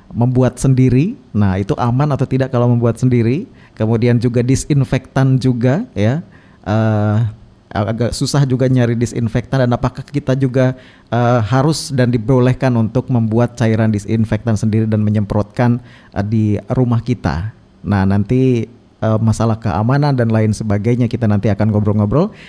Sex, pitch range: male, 105-125 Hz